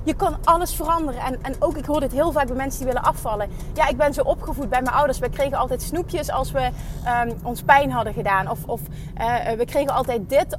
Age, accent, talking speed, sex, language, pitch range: 30-49, Dutch, 245 wpm, female, Dutch, 230-325 Hz